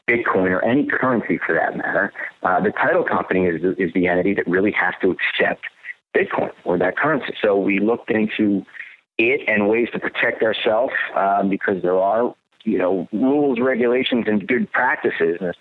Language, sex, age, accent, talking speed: English, male, 50-69, American, 180 wpm